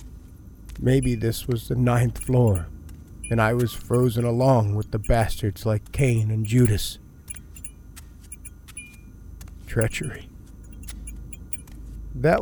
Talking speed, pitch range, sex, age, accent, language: 95 wpm, 80-125 Hz, male, 40-59, American, English